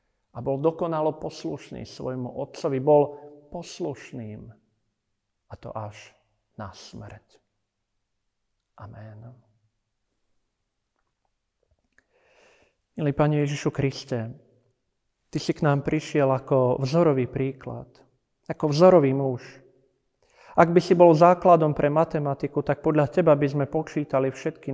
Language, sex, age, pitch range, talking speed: Slovak, male, 40-59, 130-165 Hz, 105 wpm